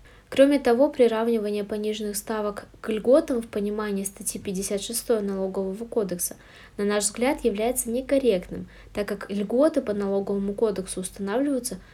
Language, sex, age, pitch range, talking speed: Russian, female, 20-39, 195-245 Hz, 125 wpm